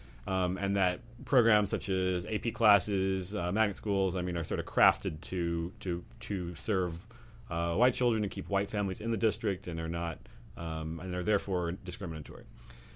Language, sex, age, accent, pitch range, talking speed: English, male, 30-49, American, 90-120 Hz, 175 wpm